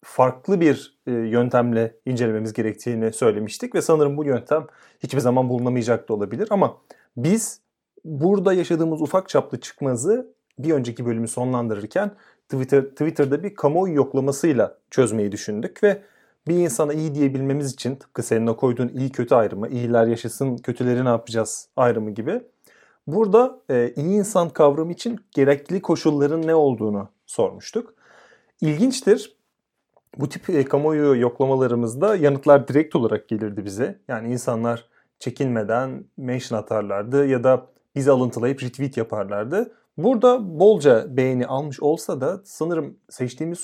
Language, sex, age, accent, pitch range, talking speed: Turkish, male, 30-49, native, 125-160 Hz, 125 wpm